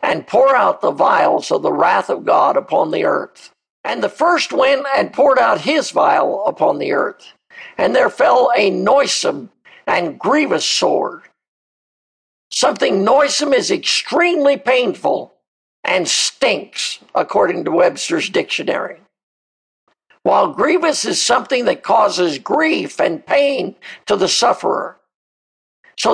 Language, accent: English, American